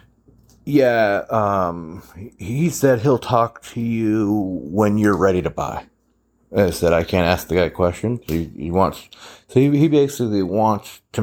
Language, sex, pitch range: English, male, 80-105 Hz